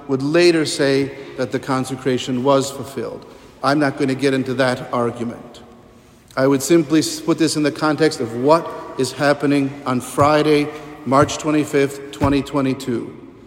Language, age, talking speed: English, 50-69, 145 wpm